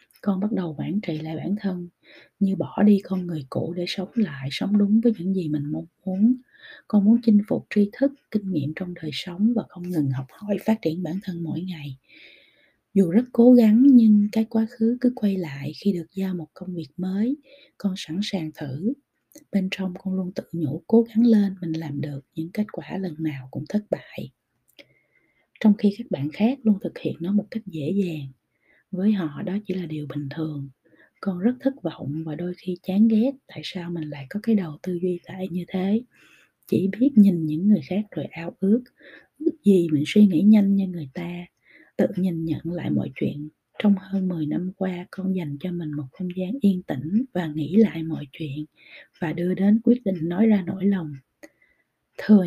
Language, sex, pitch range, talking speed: Vietnamese, female, 165-210 Hz, 210 wpm